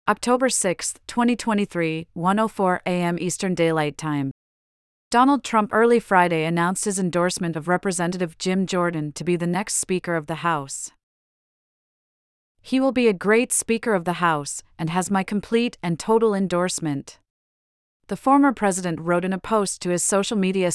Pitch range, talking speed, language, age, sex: 165-205 Hz, 155 wpm, English, 40-59, female